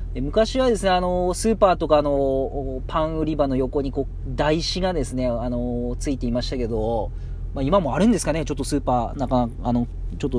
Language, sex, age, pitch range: Japanese, male, 40-59, 115-155 Hz